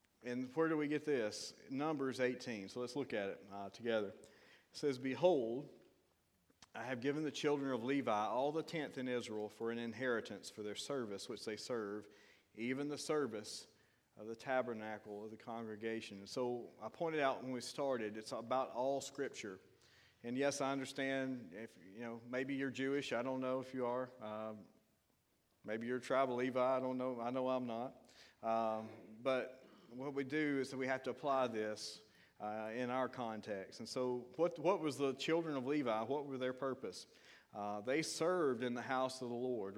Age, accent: 40-59, American